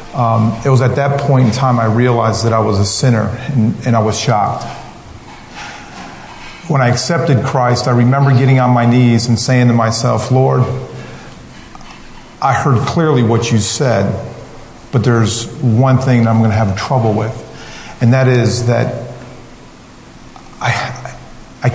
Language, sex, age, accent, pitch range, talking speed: English, male, 40-59, American, 115-135 Hz, 160 wpm